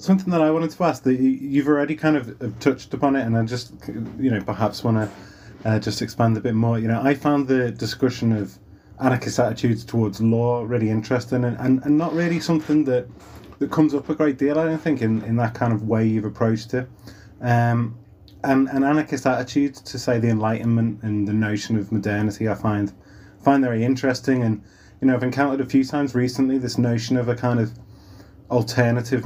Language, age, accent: English, 30-49, British